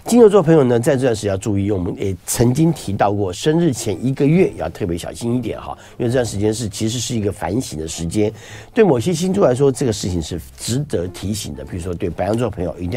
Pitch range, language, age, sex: 95-155 Hz, Chinese, 50-69, male